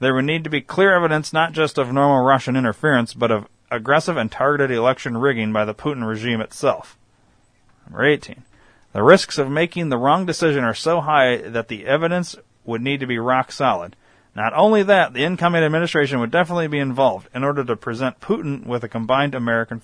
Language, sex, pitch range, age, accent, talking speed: English, male, 115-165 Hz, 40-59, American, 195 wpm